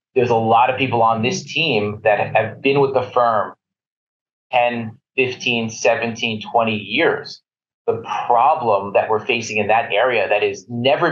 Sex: male